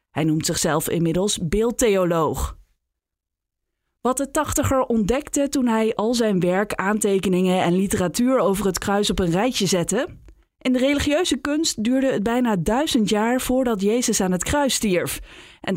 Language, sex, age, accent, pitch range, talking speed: Dutch, female, 20-39, Dutch, 170-235 Hz, 150 wpm